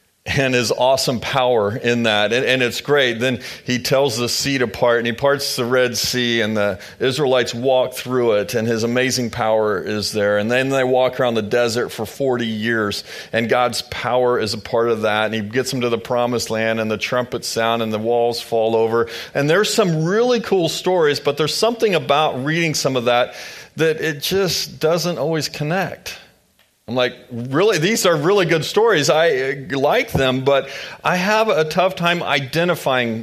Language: English